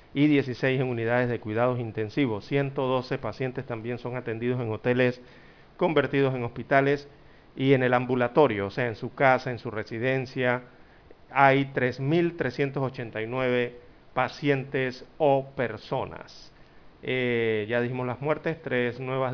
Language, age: Spanish, 40-59